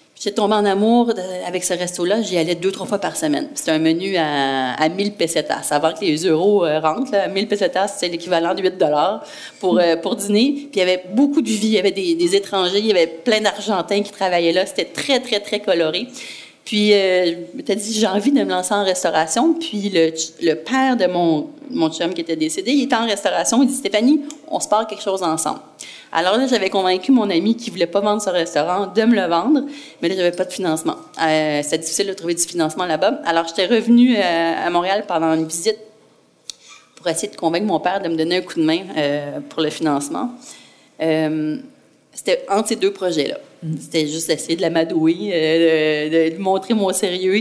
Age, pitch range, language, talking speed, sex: 30-49, 170-220 Hz, French, 220 wpm, female